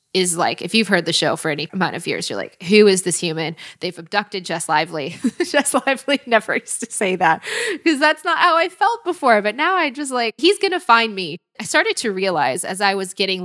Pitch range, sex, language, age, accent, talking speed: 175-230 Hz, female, English, 20-39, American, 240 wpm